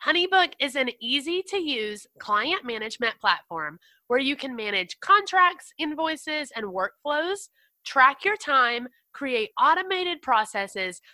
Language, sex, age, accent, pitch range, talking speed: English, female, 30-49, American, 215-325 Hz, 115 wpm